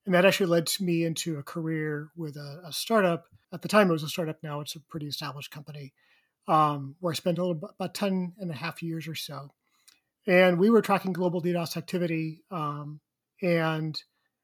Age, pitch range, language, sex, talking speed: 40-59, 160-190 Hz, English, male, 190 wpm